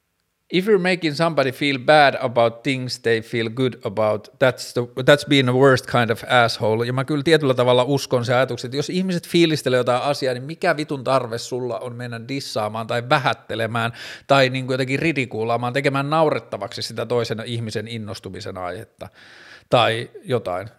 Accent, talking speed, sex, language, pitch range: native, 165 wpm, male, Finnish, 115-140 Hz